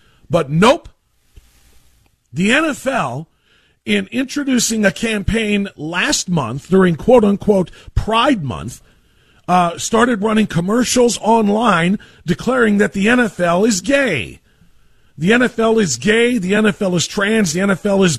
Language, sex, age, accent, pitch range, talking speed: English, male, 40-59, American, 170-225 Hz, 120 wpm